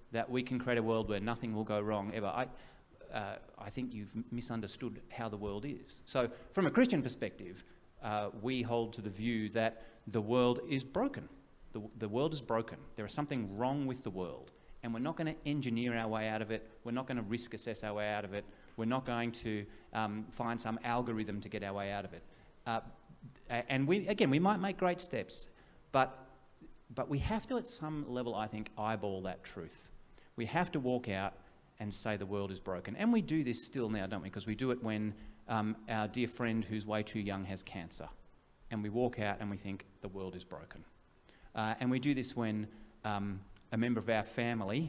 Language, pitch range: English, 105-125 Hz